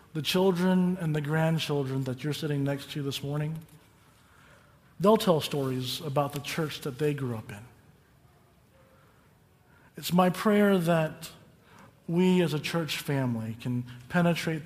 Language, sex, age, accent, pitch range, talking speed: English, male, 40-59, American, 125-170 Hz, 140 wpm